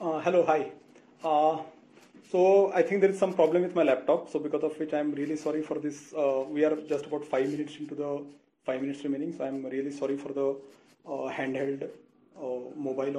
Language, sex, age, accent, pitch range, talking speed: English, male, 30-49, Indian, 145-175 Hz, 215 wpm